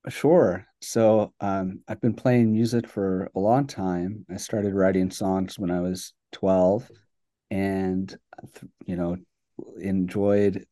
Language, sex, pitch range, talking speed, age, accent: English, male, 95-115 Hz, 130 wpm, 40-59, American